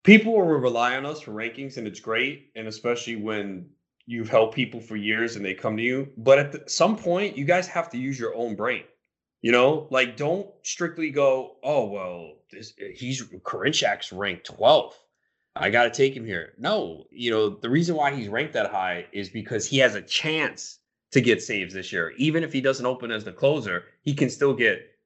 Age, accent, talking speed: 30-49, American, 205 wpm